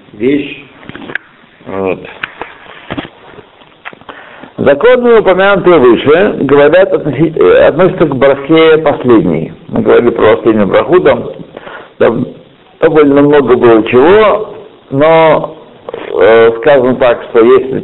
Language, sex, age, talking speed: Russian, male, 60-79, 100 wpm